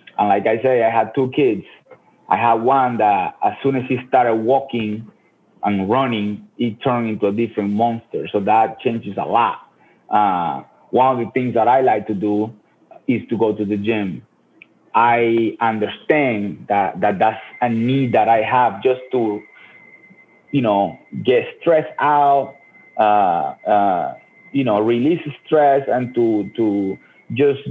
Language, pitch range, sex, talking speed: English, 110-145 Hz, male, 160 wpm